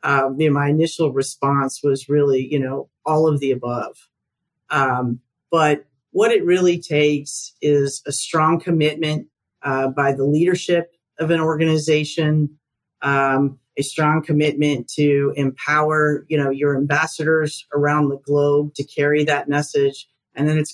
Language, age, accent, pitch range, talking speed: English, 40-59, American, 135-155 Hz, 150 wpm